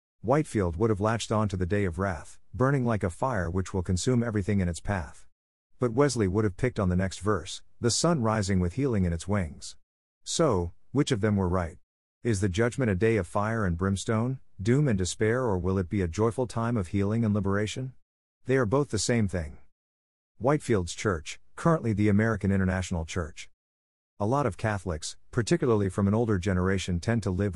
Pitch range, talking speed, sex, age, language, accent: 90-115 Hz, 200 wpm, male, 50-69, English, American